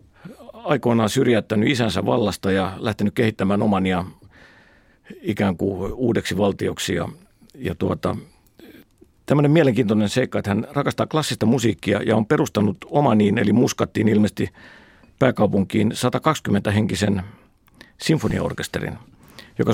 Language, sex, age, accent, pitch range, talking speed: Finnish, male, 50-69, native, 100-125 Hz, 95 wpm